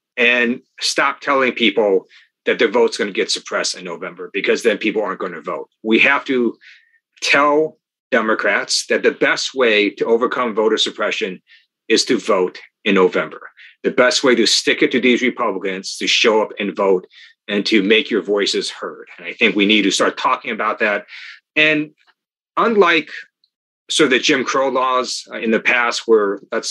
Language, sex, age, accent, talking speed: English, male, 40-59, American, 180 wpm